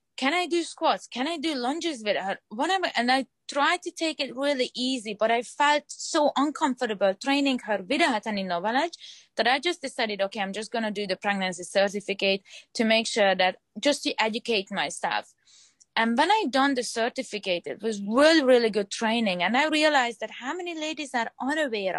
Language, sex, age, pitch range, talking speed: English, female, 20-39, 200-275 Hz, 190 wpm